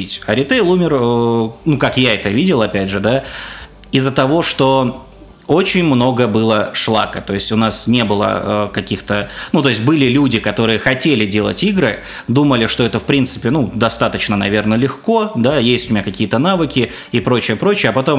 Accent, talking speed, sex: native, 175 wpm, male